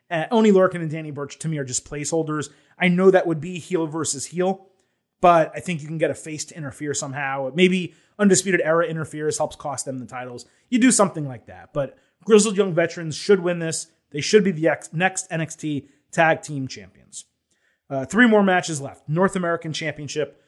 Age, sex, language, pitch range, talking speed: 30-49, male, English, 150-185 Hz, 200 wpm